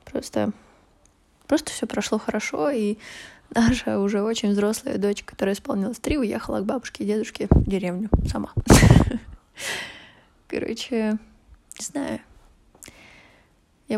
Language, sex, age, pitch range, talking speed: Russian, female, 20-39, 205-245 Hz, 110 wpm